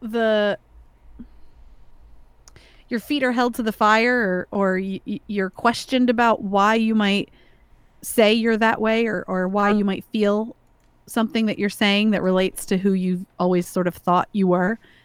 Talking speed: 175 wpm